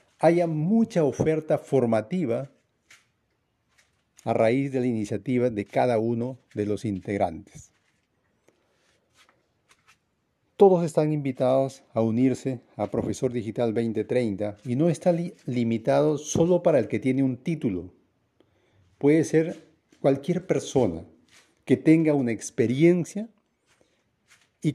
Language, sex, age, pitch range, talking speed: Spanish, male, 50-69, 115-160 Hz, 110 wpm